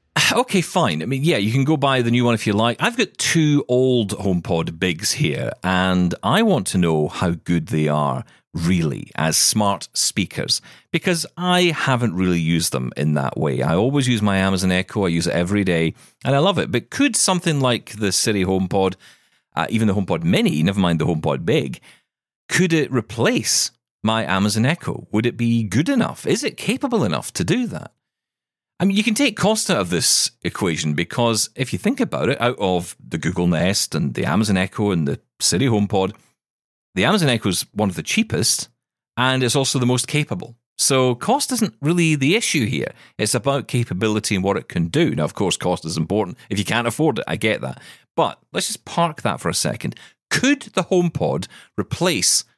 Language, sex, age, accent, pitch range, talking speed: English, male, 40-59, British, 95-150 Hz, 205 wpm